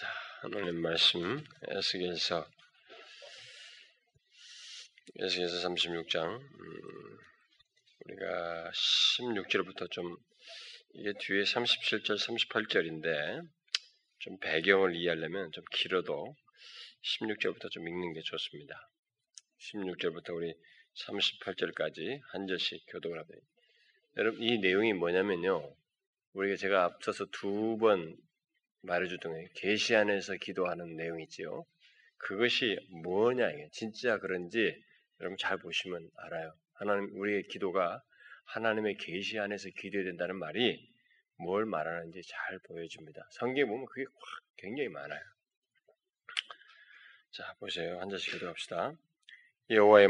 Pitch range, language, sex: 85-115 Hz, Korean, male